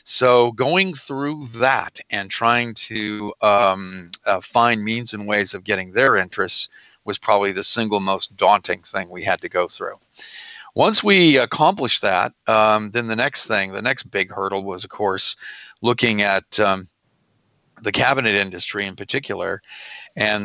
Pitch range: 100-120 Hz